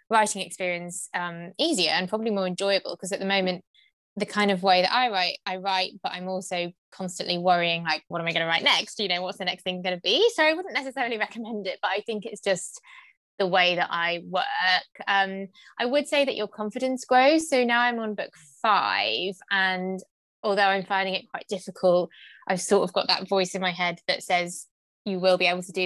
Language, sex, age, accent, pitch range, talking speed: English, female, 20-39, British, 175-205 Hz, 225 wpm